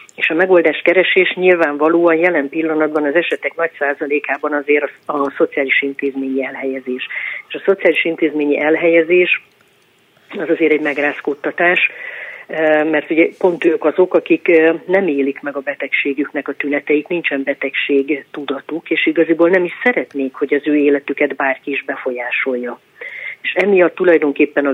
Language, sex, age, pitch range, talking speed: Hungarian, female, 40-59, 145-165 Hz, 140 wpm